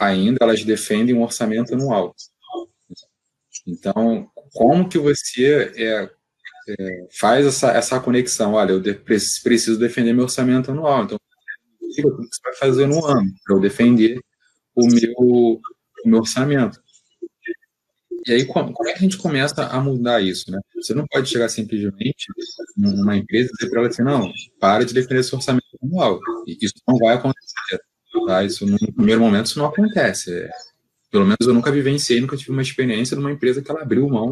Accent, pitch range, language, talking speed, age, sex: Brazilian, 115-140 Hz, Portuguese, 175 wpm, 20-39, male